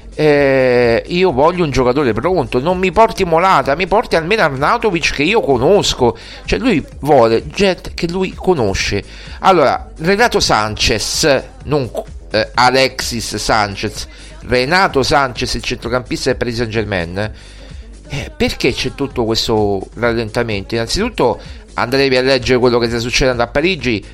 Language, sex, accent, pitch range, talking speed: Italian, male, native, 115-155 Hz, 135 wpm